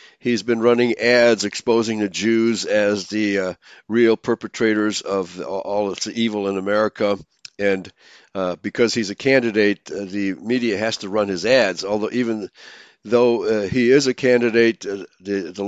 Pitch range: 105-125 Hz